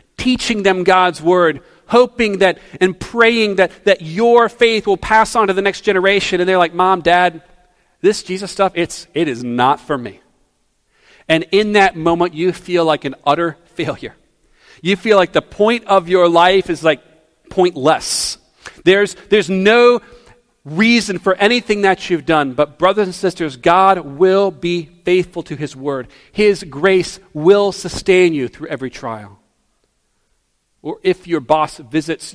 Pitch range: 135-185 Hz